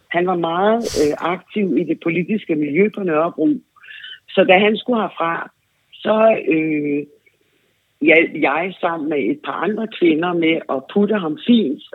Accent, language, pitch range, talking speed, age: native, Danish, 150-215 Hz, 160 wpm, 60-79